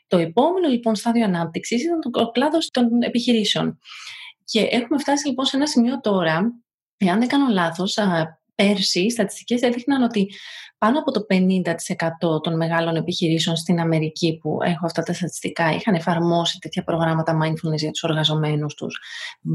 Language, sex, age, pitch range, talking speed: Greek, female, 30-49, 165-225 Hz, 155 wpm